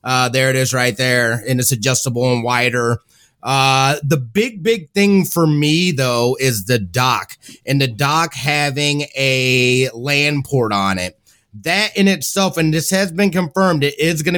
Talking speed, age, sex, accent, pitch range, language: 175 wpm, 30-49, male, American, 130-160 Hz, English